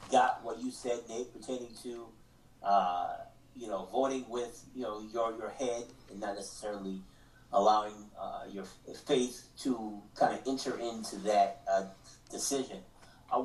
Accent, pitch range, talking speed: American, 105-125 Hz, 145 wpm